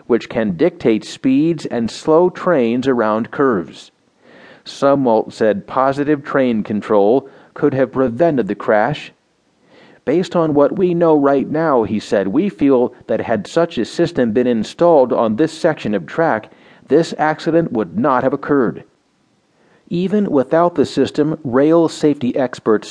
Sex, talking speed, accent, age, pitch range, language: male, 145 wpm, American, 40-59, 120-165 Hz, English